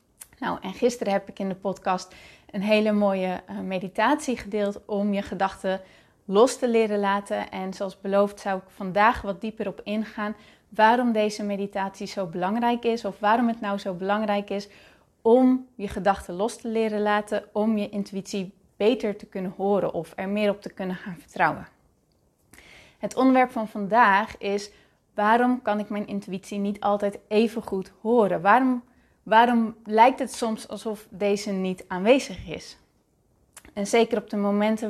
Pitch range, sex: 200-225 Hz, female